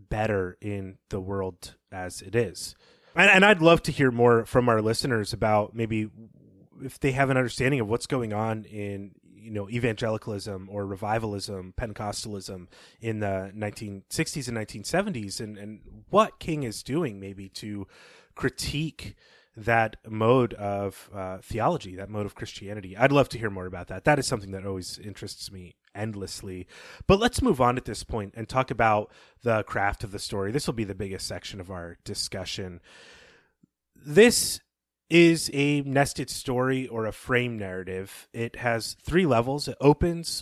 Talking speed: 165 wpm